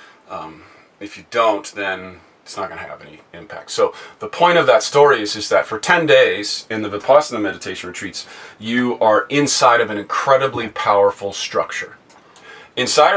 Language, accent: English, American